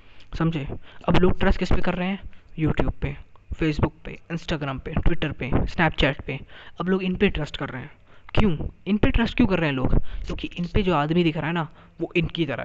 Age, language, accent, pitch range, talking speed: 20-39, Hindi, native, 145-190 Hz, 230 wpm